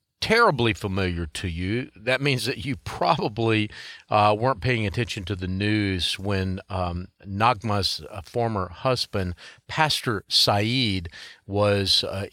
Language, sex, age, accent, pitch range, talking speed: English, male, 40-59, American, 95-125 Hz, 125 wpm